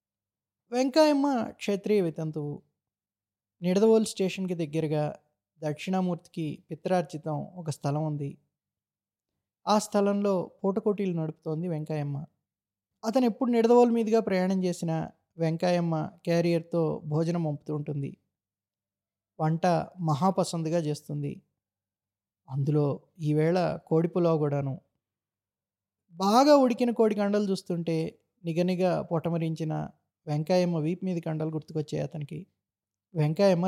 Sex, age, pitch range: male, 20-39, 150-185 Hz